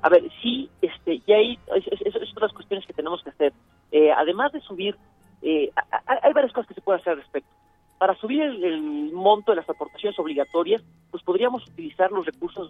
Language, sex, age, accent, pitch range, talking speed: Spanish, male, 40-59, Mexican, 150-205 Hz, 210 wpm